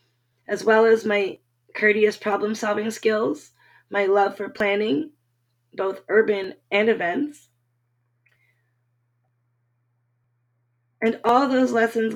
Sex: female